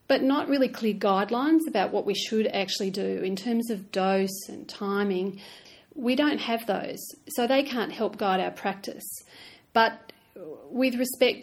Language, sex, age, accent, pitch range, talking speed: English, female, 40-59, Australian, 195-235 Hz, 165 wpm